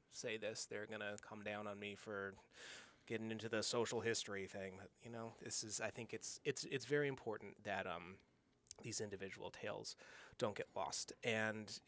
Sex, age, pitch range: male, 30-49, 100-120 Hz